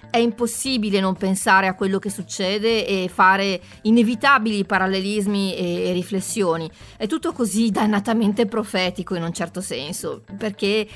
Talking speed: 130 wpm